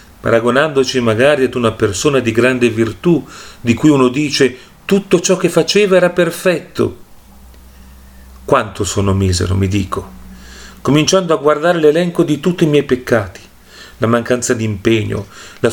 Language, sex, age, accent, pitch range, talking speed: Italian, male, 40-59, native, 115-160 Hz, 140 wpm